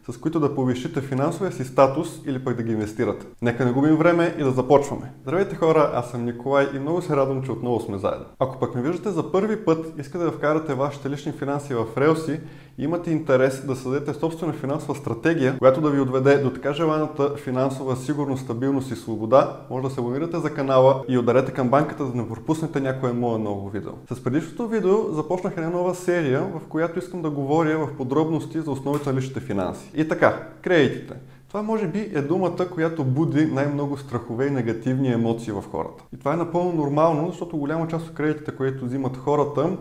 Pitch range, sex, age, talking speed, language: 125-160 Hz, male, 20-39, 200 wpm, Bulgarian